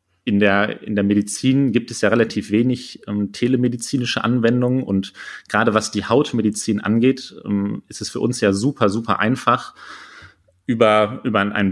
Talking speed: 160 wpm